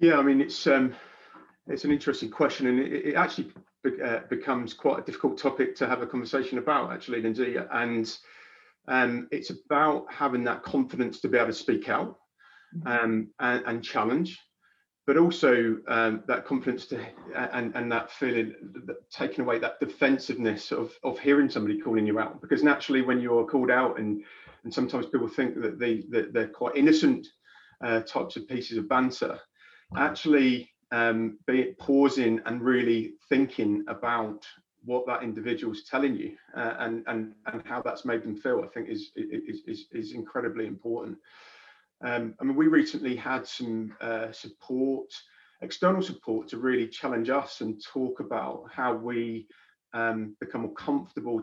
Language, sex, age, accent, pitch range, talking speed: English, male, 30-49, British, 115-140 Hz, 165 wpm